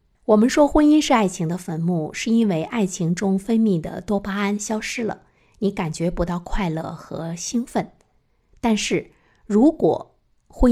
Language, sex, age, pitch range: Chinese, female, 50-69, 170-230 Hz